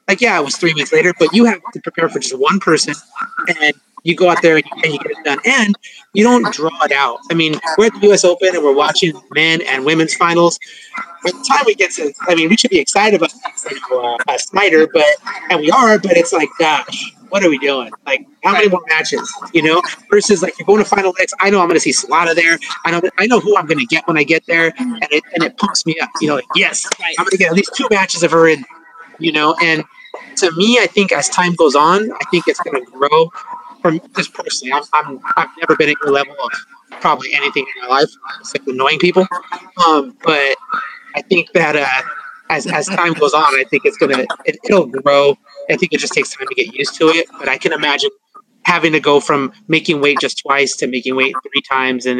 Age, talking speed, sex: 30-49, 250 wpm, male